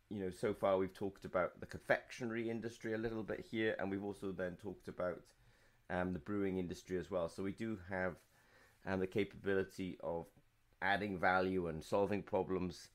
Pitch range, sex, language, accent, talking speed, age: 95-115 Hz, male, English, British, 180 wpm, 30-49